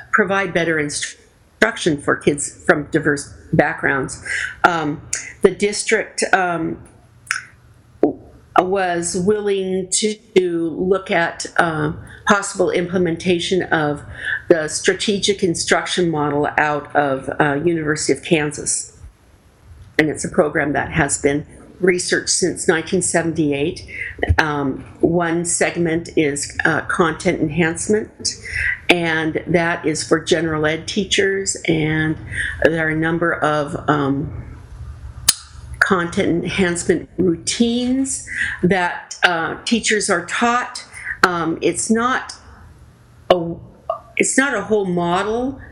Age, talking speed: 50-69, 105 wpm